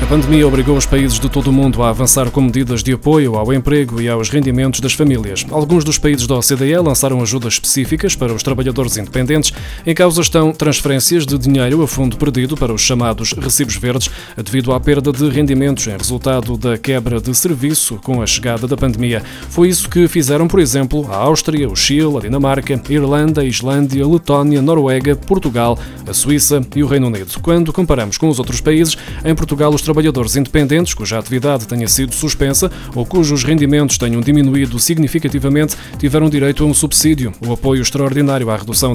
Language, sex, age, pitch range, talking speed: Portuguese, male, 20-39, 125-150 Hz, 195 wpm